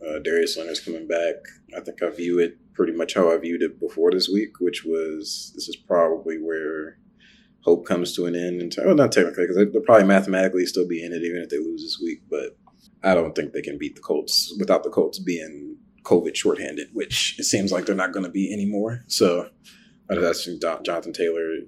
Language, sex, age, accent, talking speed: English, male, 30-49, American, 220 wpm